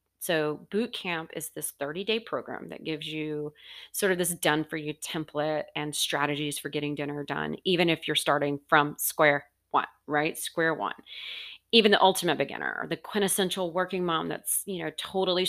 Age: 30-49